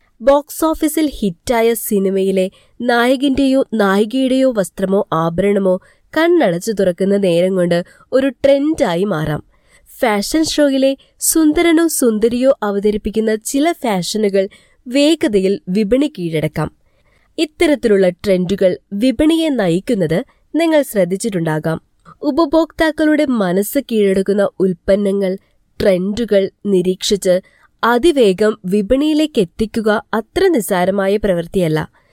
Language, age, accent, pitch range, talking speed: Malayalam, 20-39, native, 195-275 Hz, 80 wpm